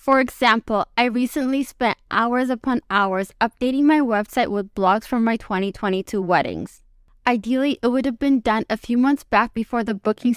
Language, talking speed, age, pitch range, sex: English, 175 wpm, 20-39, 215-255 Hz, female